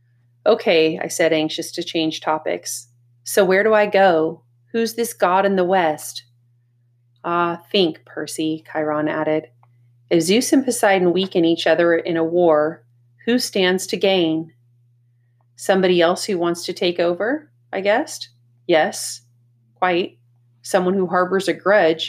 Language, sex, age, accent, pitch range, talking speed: English, female, 30-49, American, 120-180 Hz, 145 wpm